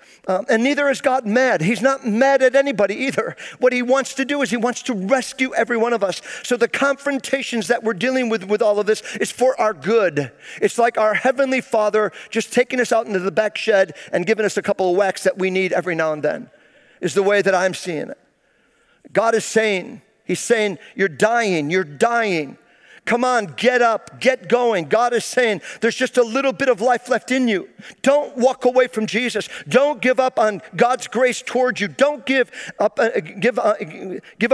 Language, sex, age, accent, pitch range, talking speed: English, male, 50-69, American, 210-255 Hz, 205 wpm